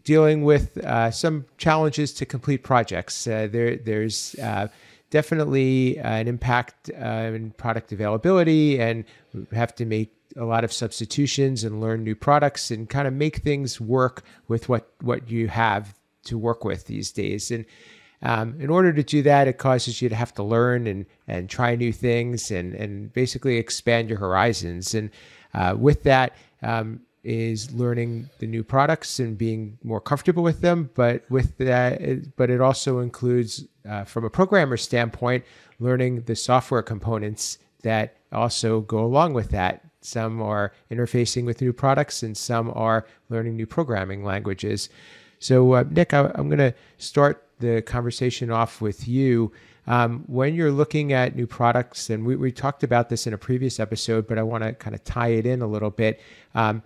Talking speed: 175 wpm